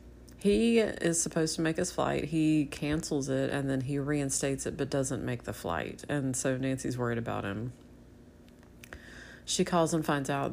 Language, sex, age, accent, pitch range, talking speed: English, female, 30-49, American, 120-160 Hz, 175 wpm